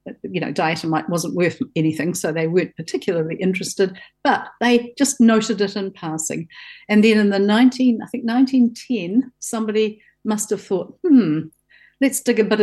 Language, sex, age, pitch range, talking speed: English, female, 50-69, 180-215 Hz, 165 wpm